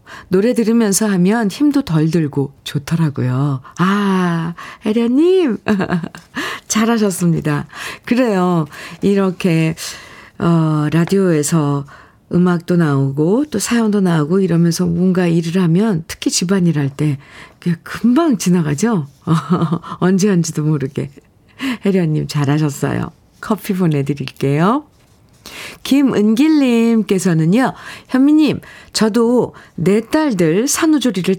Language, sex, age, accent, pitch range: Korean, female, 50-69, native, 160-215 Hz